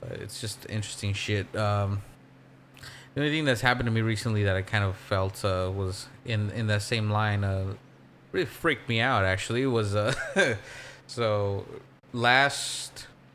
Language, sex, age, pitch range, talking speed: English, male, 20-39, 95-115 Hz, 155 wpm